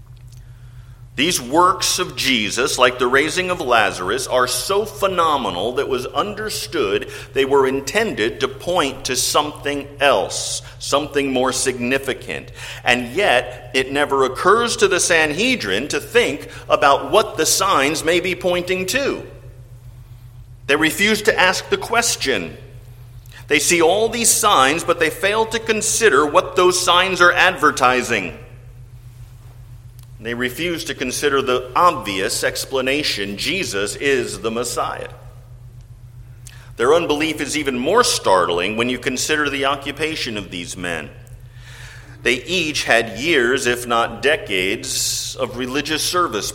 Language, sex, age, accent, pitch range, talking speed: English, male, 50-69, American, 120-150 Hz, 130 wpm